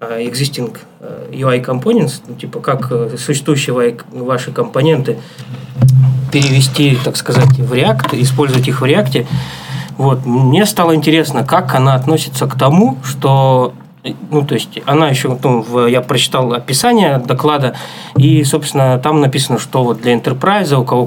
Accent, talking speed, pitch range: native, 140 wpm, 125-150 Hz